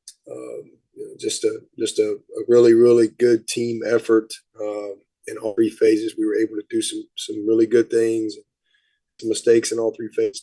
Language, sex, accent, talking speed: English, male, American, 195 wpm